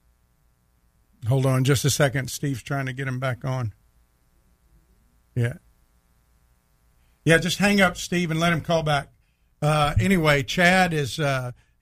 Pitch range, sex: 125-155 Hz, male